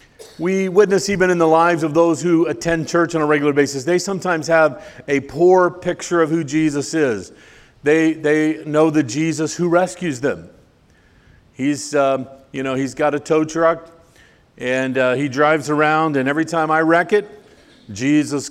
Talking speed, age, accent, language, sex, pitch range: 175 wpm, 40-59, American, English, male, 130-165 Hz